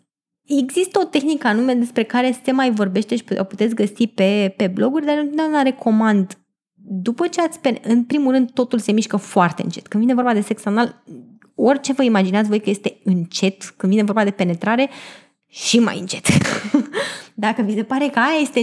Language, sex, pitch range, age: Romanian, female, 215-290 Hz, 20-39